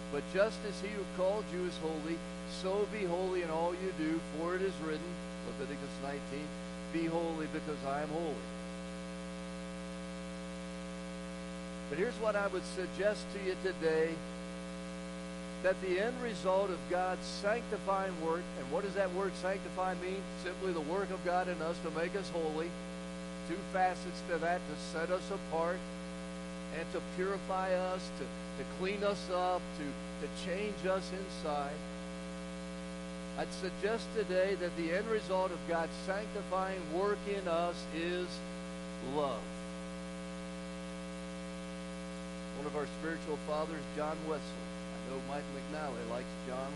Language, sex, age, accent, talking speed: English, male, 50-69, American, 145 wpm